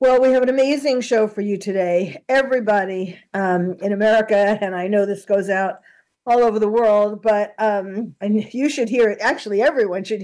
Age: 50-69